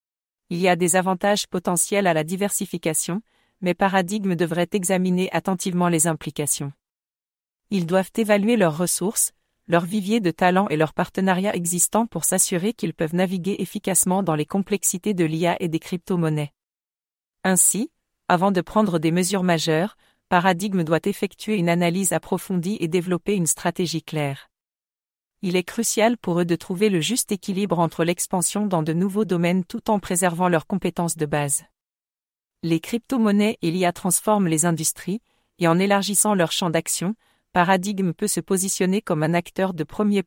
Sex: female